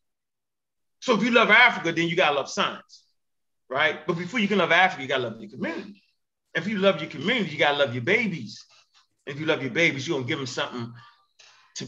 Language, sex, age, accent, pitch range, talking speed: English, male, 30-49, American, 170-225 Hz, 235 wpm